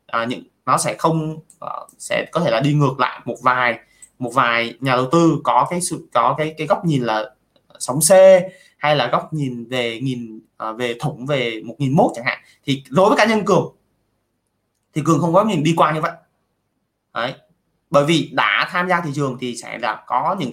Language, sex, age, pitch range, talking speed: Vietnamese, male, 20-39, 125-160 Hz, 215 wpm